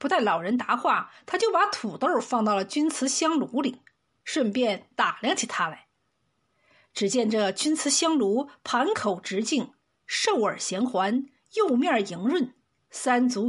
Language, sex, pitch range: Chinese, female, 220-300 Hz